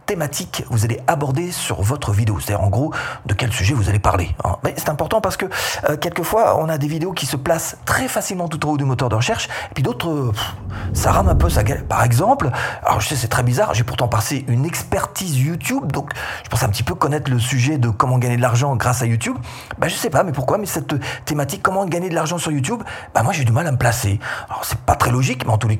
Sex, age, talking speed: male, 40-59, 260 wpm